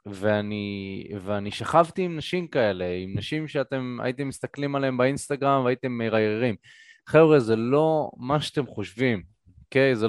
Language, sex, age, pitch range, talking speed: Hebrew, male, 20-39, 110-140 Hz, 145 wpm